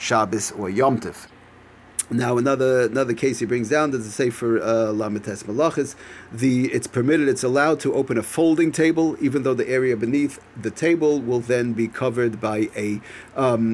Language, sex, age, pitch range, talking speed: English, male, 40-59, 115-145 Hz, 180 wpm